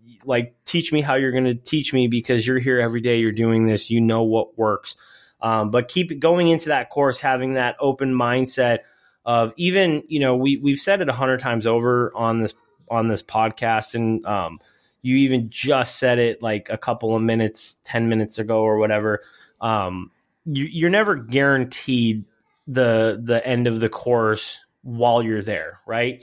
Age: 20-39